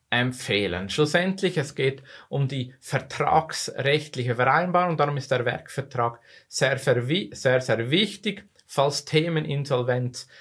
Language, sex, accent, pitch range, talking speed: German, male, Austrian, 120-160 Hz, 115 wpm